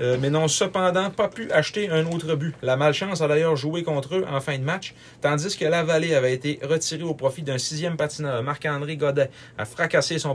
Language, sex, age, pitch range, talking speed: French, male, 30-49, 120-155 Hz, 220 wpm